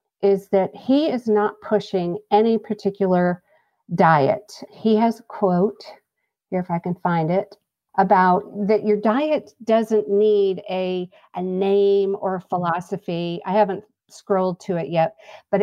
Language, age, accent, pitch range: English, 50-69, American, 185-215 Hz